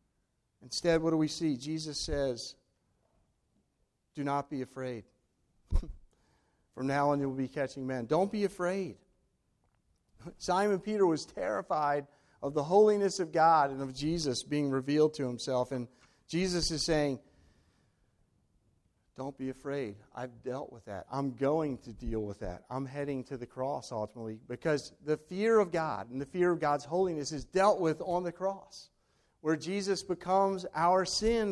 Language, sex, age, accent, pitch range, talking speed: English, male, 50-69, American, 125-175 Hz, 160 wpm